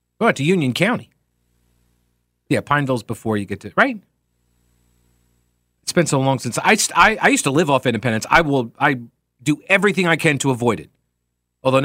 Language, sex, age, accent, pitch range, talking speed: English, male, 40-59, American, 130-200 Hz, 180 wpm